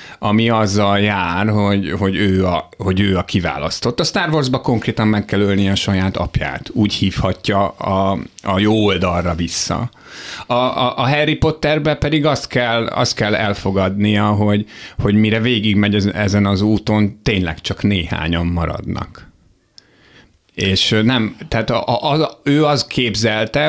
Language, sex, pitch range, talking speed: Hungarian, male, 95-115 Hz, 135 wpm